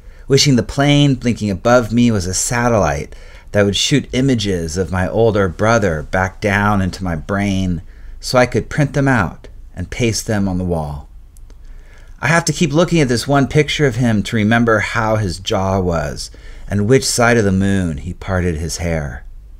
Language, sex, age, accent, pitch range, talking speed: English, male, 40-59, American, 90-115 Hz, 185 wpm